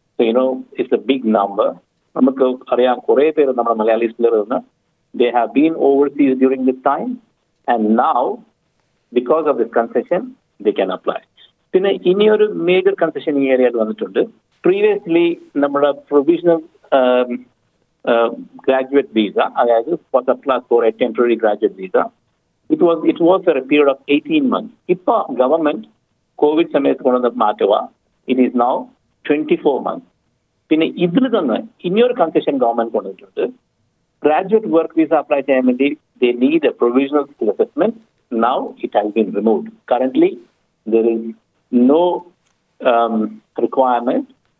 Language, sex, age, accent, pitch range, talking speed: Malayalam, male, 50-69, native, 120-170 Hz, 135 wpm